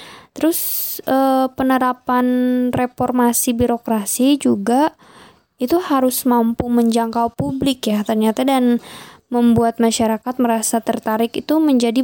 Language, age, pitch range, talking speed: Indonesian, 10-29, 230-255 Hz, 100 wpm